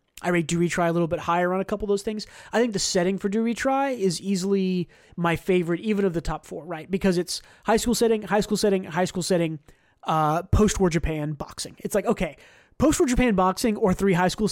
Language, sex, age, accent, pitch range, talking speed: English, male, 30-49, American, 170-205 Hz, 230 wpm